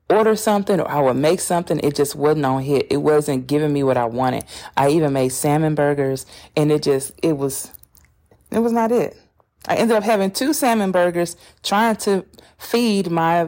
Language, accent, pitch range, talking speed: English, American, 150-205 Hz, 195 wpm